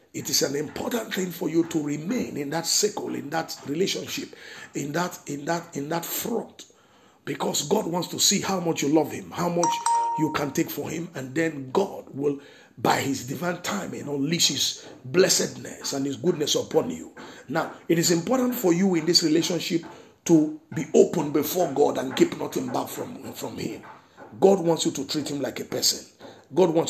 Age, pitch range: 50-69, 140-180 Hz